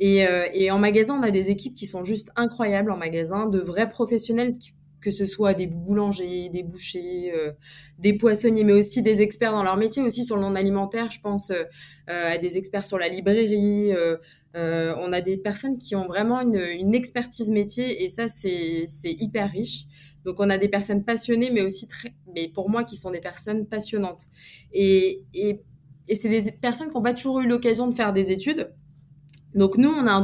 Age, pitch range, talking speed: 20-39, 180-225 Hz, 205 wpm